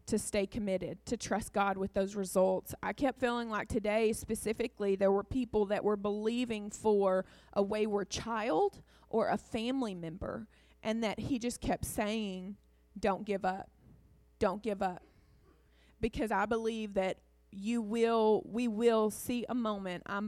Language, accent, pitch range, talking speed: English, American, 195-235 Hz, 155 wpm